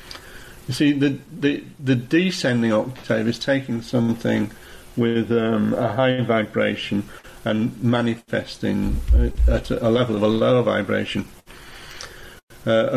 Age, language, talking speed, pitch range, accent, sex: 50-69, English, 115 wpm, 115-130 Hz, British, male